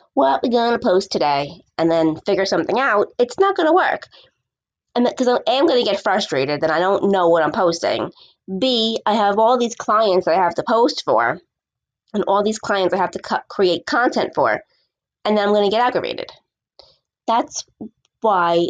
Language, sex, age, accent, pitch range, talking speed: English, female, 20-39, American, 175-240 Hz, 185 wpm